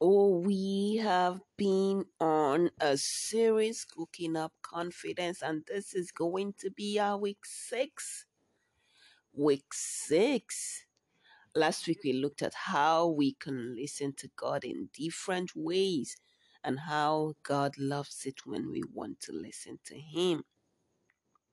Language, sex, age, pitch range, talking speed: English, female, 30-49, 145-200 Hz, 130 wpm